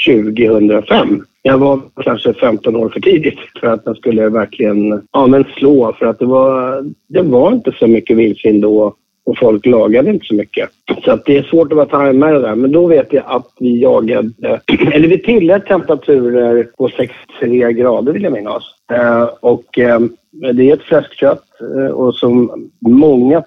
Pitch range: 110-135 Hz